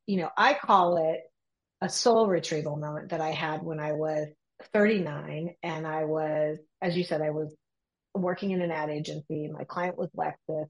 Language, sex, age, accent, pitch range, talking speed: English, female, 40-59, American, 165-210 Hz, 185 wpm